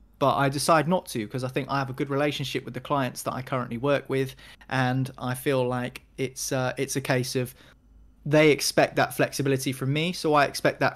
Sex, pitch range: male, 125-140 Hz